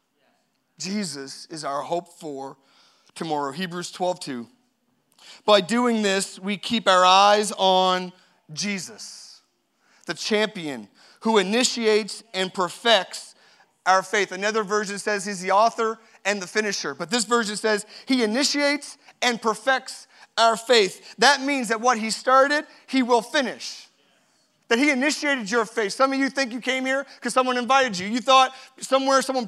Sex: male